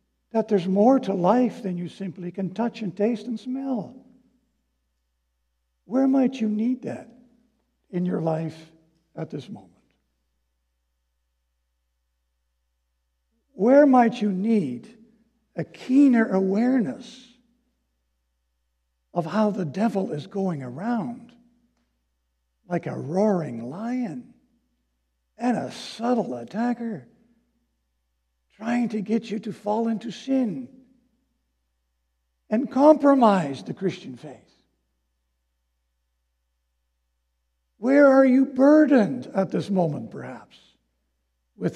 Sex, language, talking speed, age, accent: male, English, 100 wpm, 60-79, American